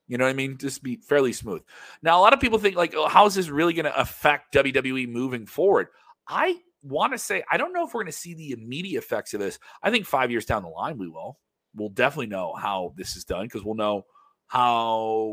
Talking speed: 250 wpm